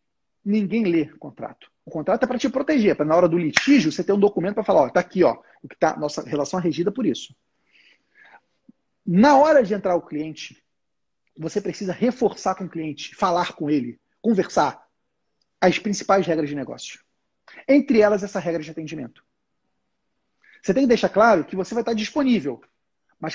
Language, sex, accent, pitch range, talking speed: Portuguese, male, Brazilian, 175-245 Hz, 180 wpm